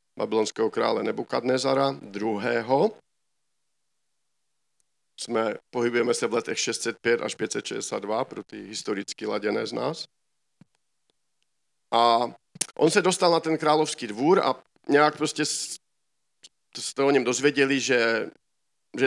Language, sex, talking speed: Czech, male, 115 wpm